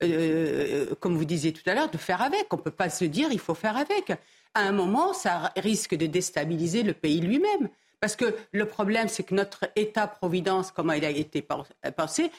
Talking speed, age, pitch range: 215 wpm, 50-69, 180-285 Hz